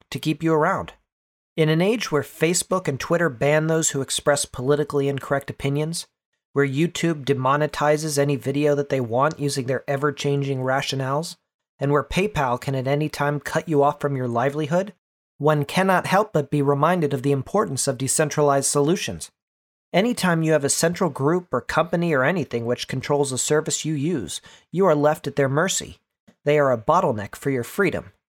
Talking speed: 180 wpm